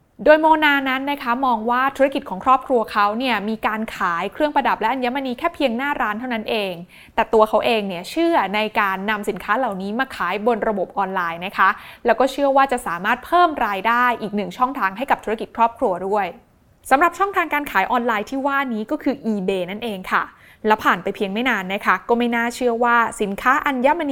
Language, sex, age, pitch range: Thai, female, 20-39, 200-260 Hz